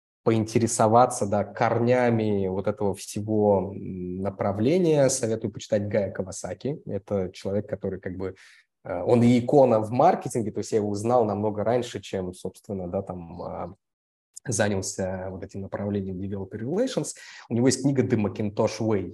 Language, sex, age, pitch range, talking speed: Russian, male, 20-39, 95-115 Hz, 140 wpm